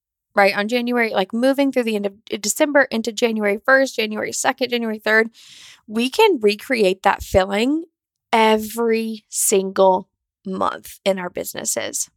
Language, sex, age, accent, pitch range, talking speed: English, female, 10-29, American, 200-255 Hz, 140 wpm